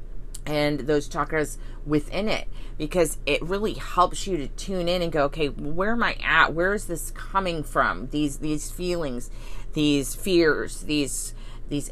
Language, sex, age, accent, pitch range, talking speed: English, female, 30-49, American, 130-165 Hz, 160 wpm